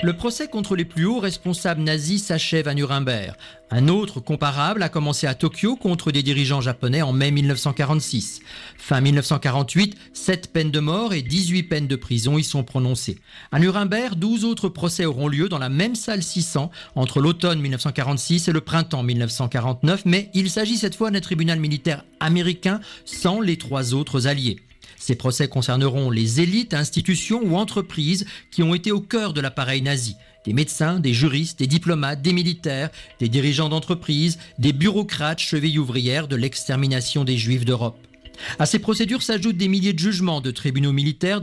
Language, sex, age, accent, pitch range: Japanese, male, 40-59, French, 135-180 Hz